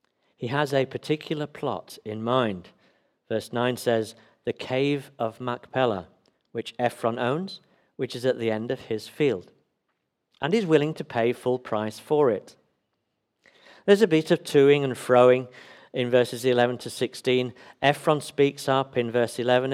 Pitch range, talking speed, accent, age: 115-145 Hz, 160 wpm, British, 50-69